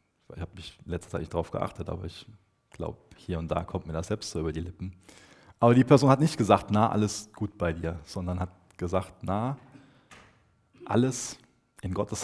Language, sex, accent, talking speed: German, male, German, 190 wpm